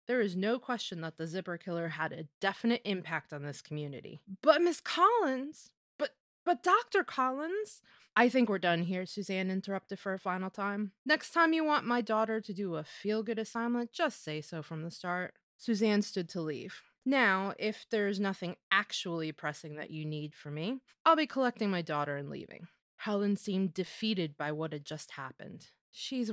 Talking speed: 185 wpm